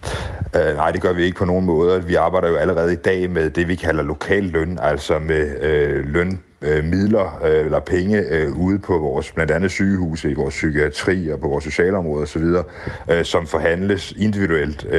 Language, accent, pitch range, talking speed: Danish, native, 80-95 Hz, 190 wpm